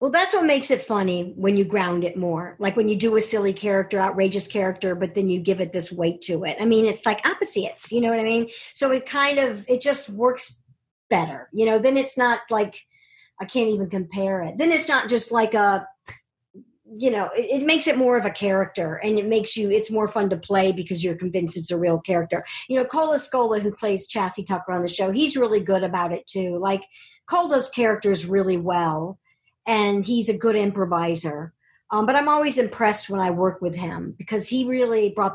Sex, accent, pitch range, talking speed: male, American, 185-230 Hz, 220 wpm